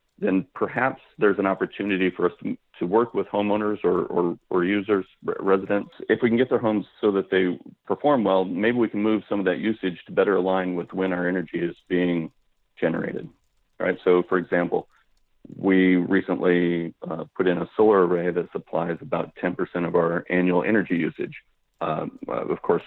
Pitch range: 85-100 Hz